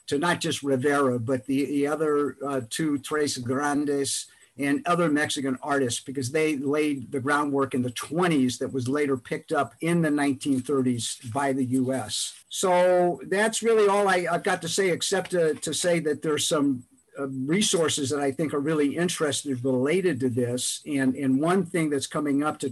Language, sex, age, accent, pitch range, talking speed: English, male, 50-69, American, 135-155 Hz, 185 wpm